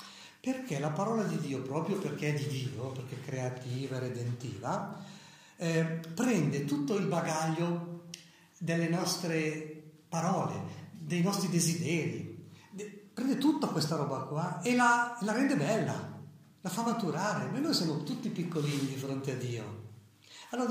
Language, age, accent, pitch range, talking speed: Italian, 50-69, native, 140-190 Hz, 145 wpm